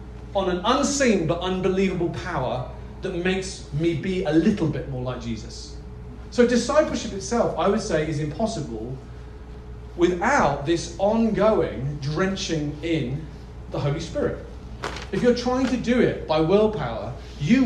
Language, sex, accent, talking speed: English, male, British, 140 wpm